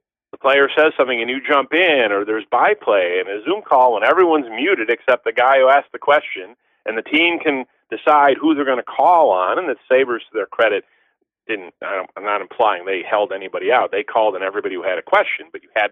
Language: English